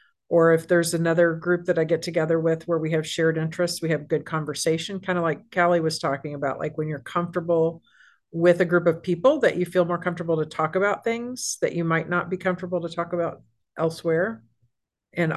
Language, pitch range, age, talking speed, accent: English, 160-190 Hz, 50-69, 215 wpm, American